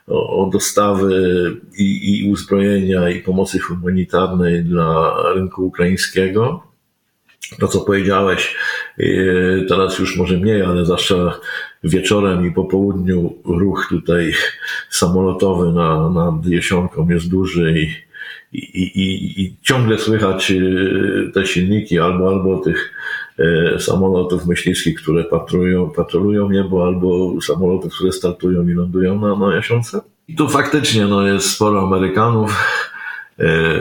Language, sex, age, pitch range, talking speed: Polish, male, 50-69, 90-100 Hz, 115 wpm